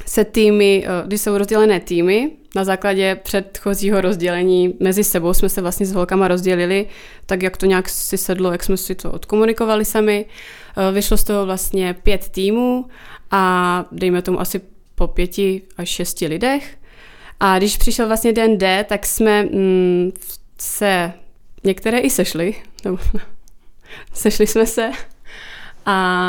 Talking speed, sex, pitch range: 140 wpm, female, 185-205 Hz